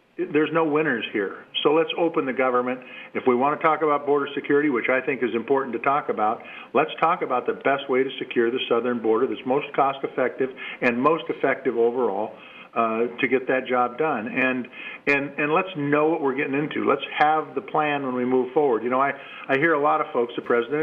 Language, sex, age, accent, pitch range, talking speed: English, male, 50-69, American, 125-150 Hz, 220 wpm